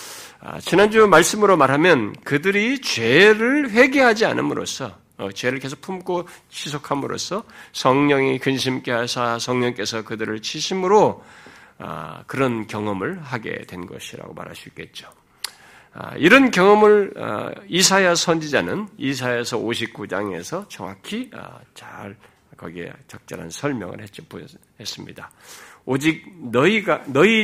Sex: male